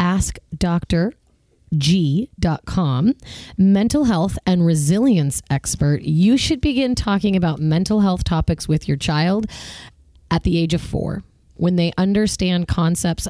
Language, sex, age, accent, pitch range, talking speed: English, female, 30-49, American, 165-205 Hz, 115 wpm